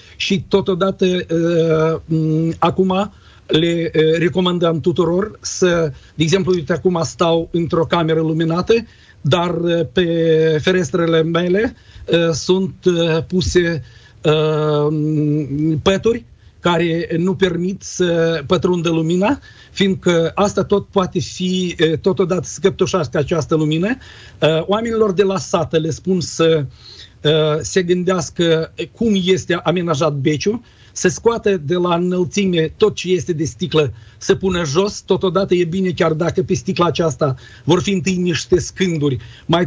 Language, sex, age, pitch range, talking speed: Romanian, male, 40-59, 160-185 Hz, 130 wpm